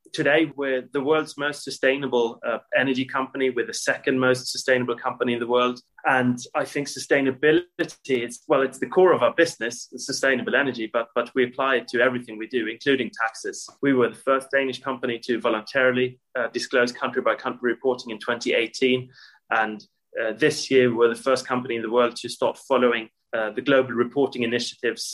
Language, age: English, 30-49